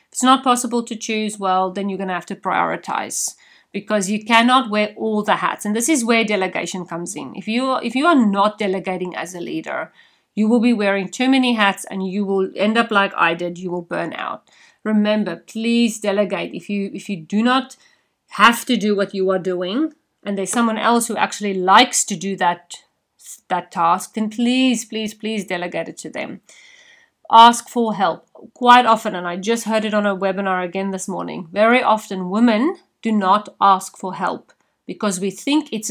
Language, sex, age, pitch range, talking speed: English, female, 40-59, 185-230 Hz, 205 wpm